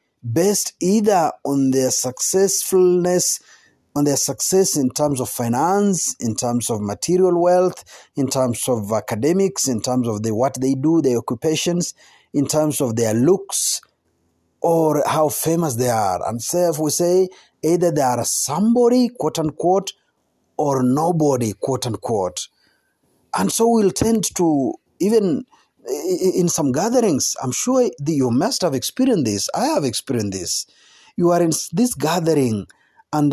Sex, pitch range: male, 125-185 Hz